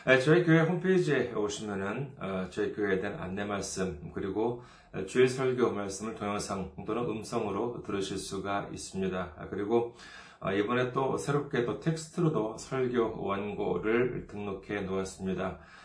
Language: Korean